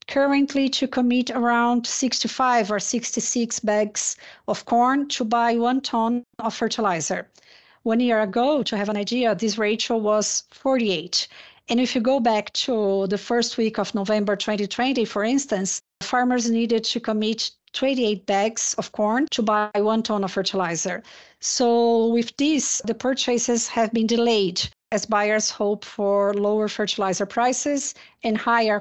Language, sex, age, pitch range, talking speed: English, female, 40-59, 210-245 Hz, 150 wpm